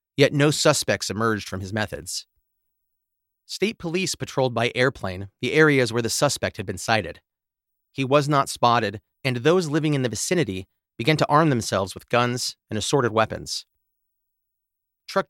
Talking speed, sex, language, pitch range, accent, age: 155 wpm, male, English, 95-145 Hz, American, 30-49